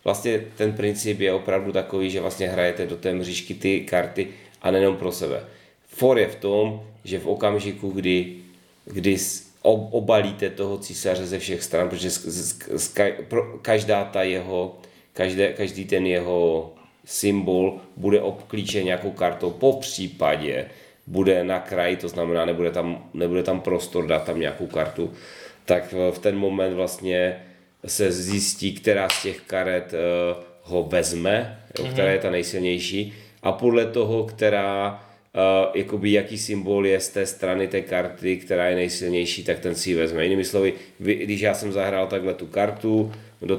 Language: Czech